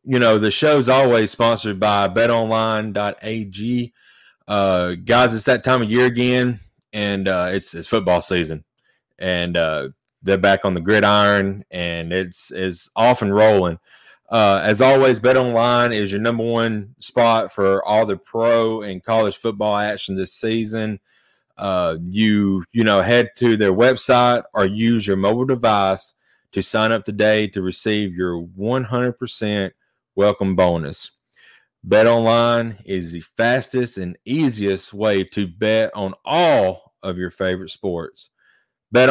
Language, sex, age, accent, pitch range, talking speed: English, male, 30-49, American, 95-120 Hz, 145 wpm